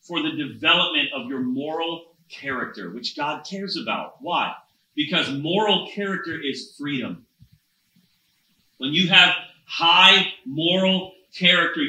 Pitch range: 150-210 Hz